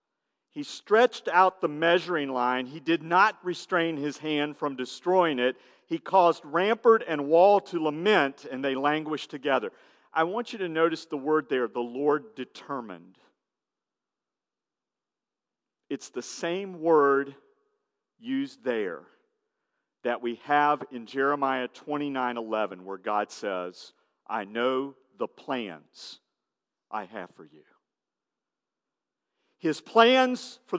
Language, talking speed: English, 125 wpm